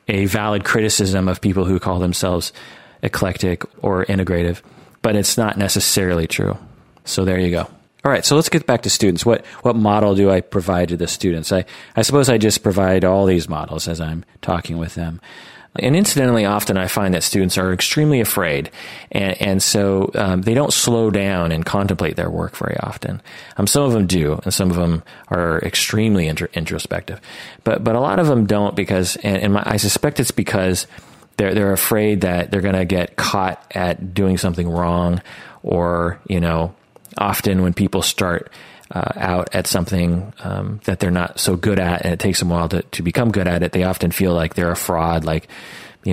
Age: 30-49